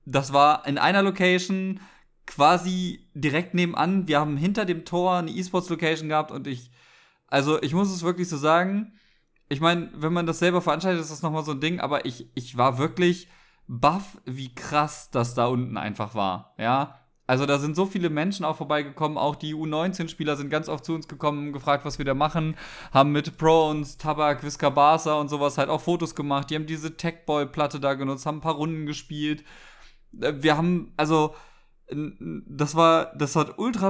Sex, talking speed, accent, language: male, 190 wpm, German, German